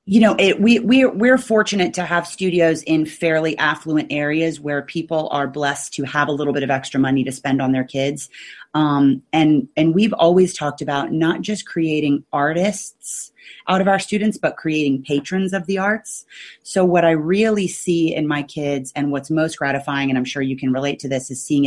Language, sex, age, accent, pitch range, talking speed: English, female, 30-49, American, 140-165 Hz, 205 wpm